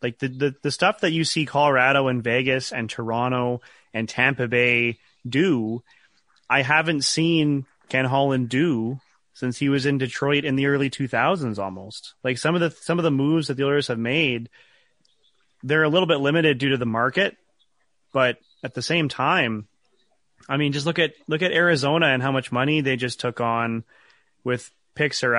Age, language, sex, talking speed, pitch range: 30-49, English, male, 185 wpm, 125-145 Hz